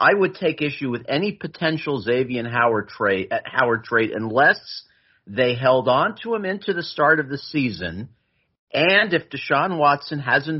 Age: 50-69